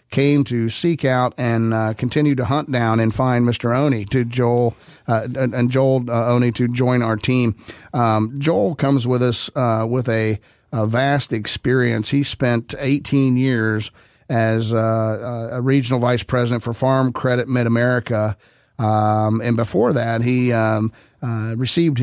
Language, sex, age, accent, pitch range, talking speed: English, male, 40-59, American, 115-135 Hz, 160 wpm